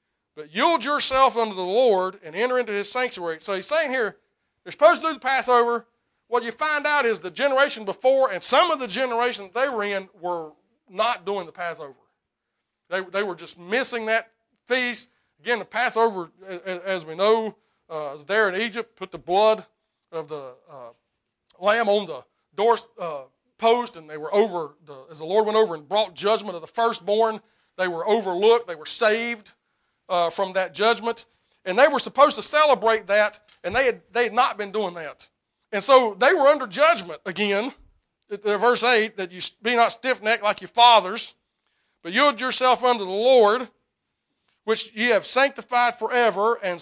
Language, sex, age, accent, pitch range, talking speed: English, male, 40-59, American, 195-255 Hz, 185 wpm